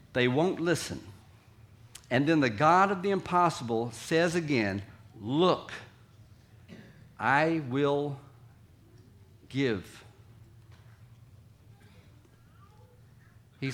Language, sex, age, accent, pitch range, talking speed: English, male, 50-69, American, 110-140 Hz, 75 wpm